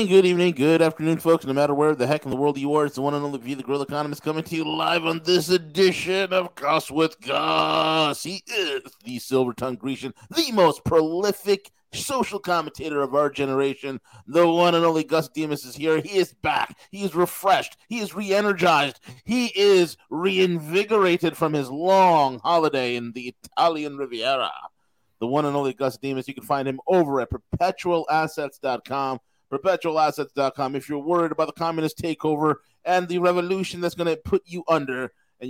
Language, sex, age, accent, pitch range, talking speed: English, male, 30-49, American, 140-175 Hz, 180 wpm